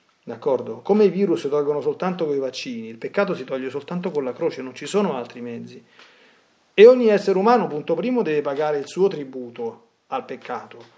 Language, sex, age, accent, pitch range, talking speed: Italian, male, 30-49, native, 140-200 Hz, 195 wpm